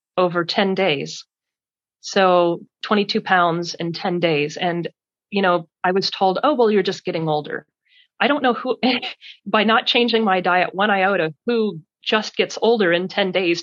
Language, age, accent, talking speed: English, 30-49, American, 170 wpm